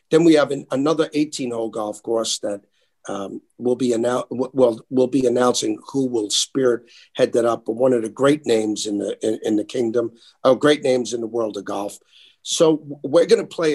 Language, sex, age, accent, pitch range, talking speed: English, male, 50-69, American, 110-145 Hz, 215 wpm